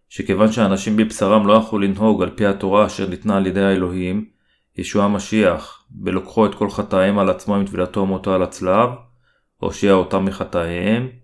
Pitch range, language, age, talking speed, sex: 95-105 Hz, Hebrew, 30-49, 165 wpm, male